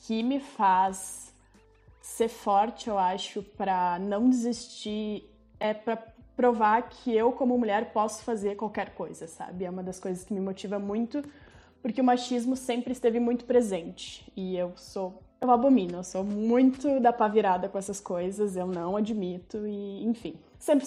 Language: Portuguese